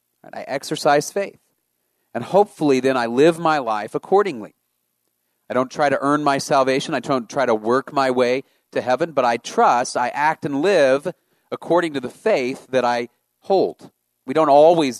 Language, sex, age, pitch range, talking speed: English, male, 40-59, 120-155 Hz, 180 wpm